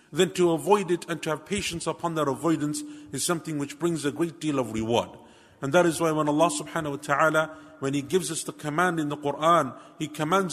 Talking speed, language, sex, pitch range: 230 wpm, English, male, 145-175 Hz